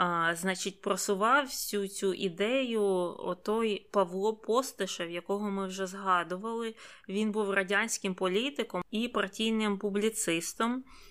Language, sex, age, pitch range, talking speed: Ukrainian, female, 20-39, 180-210 Hz, 110 wpm